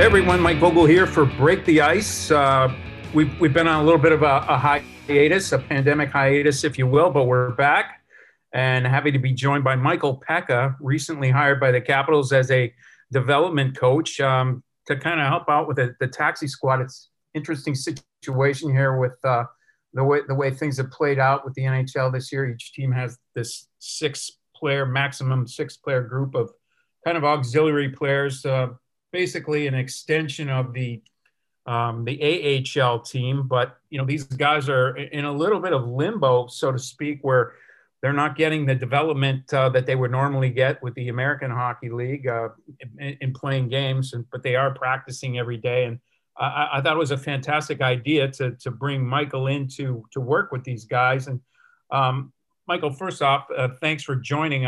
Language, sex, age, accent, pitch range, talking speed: English, male, 40-59, American, 130-150 Hz, 190 wpm